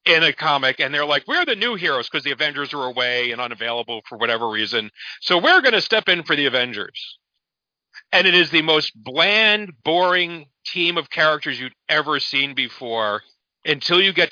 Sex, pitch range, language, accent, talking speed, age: male, 130-165 Hz, English, American, 195 wpm, 40-59